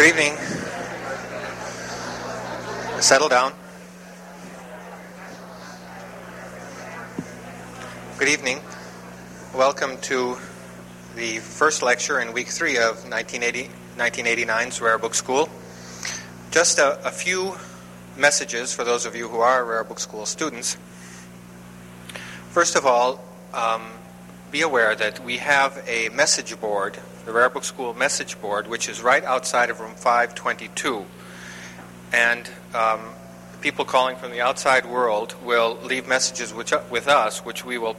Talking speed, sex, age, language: 120 wpm, male, 30-49, English